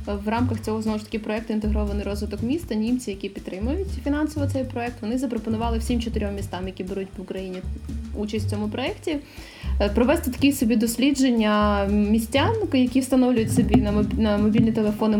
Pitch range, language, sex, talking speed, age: 200-255 Hz, Ukrainian, female, 160 wpm, 20-39